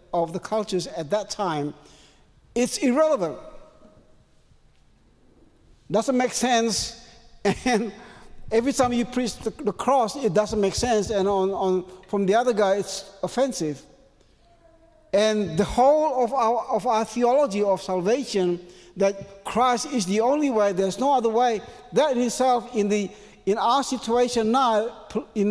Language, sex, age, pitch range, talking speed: English, male, 60-79, 190-250 Hz, 145 wpm